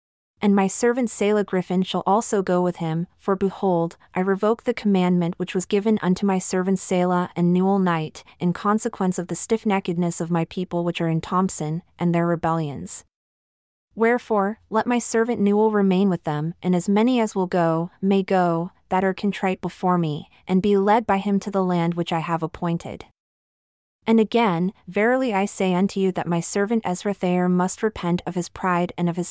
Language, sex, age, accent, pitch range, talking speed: English, female, 30-49, American, 175-205 Hz, 190 wpm